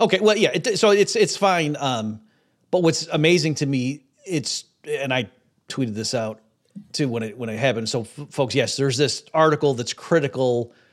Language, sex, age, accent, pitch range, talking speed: English, male, 40-59, American, 115-150 Hz, 190 wpm